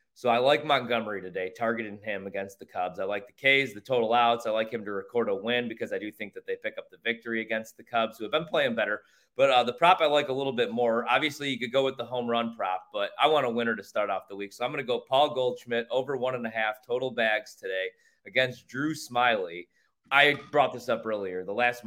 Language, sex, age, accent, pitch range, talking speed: English, male, 30-49, American, 110-130 Hz, 265 wpm